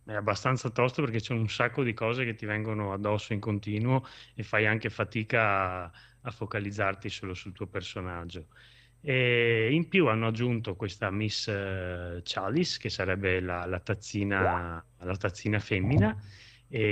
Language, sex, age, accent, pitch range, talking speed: Italian, male, 30-49, native, 95-120 Hz, 155 wpm